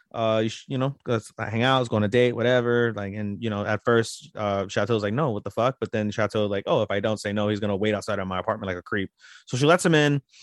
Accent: American